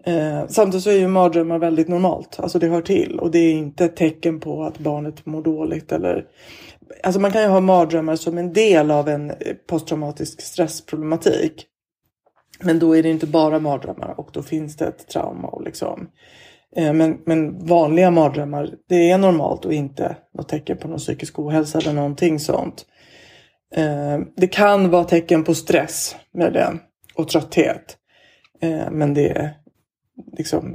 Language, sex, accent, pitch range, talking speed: Swedish, female, native, 155-180 Hz, 170 wpm